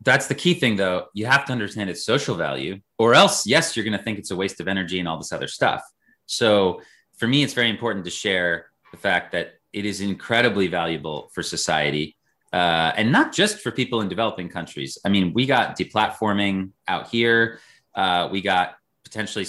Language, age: English, 30-49